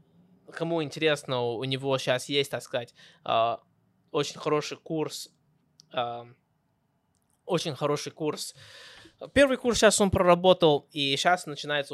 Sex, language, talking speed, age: male, Russian, 110 wpm, 20-39